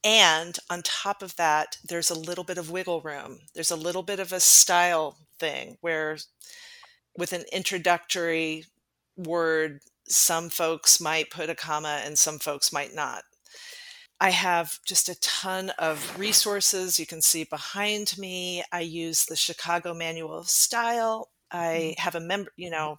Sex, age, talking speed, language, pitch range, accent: female, 40-59, 160 wpm, English, 165-200 Hz, American